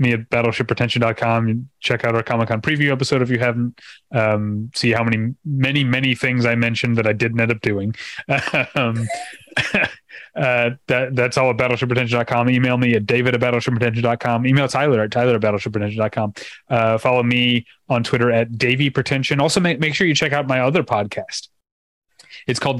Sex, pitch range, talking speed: male, 110-130 Hz, 185 wpm